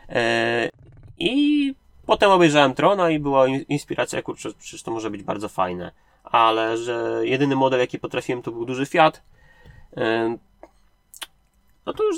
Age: 20-39